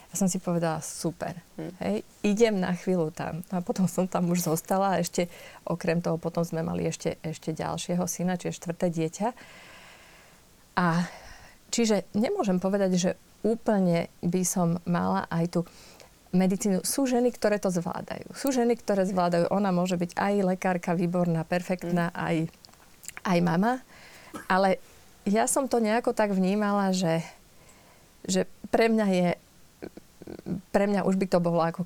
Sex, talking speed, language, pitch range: female, 150 wpm, Slovak, 175-205 Hz